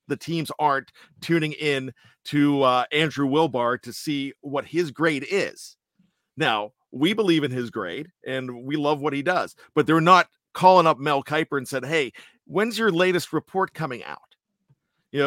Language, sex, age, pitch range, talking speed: English, male, 50-69, 140-175 Hz, 175 wpm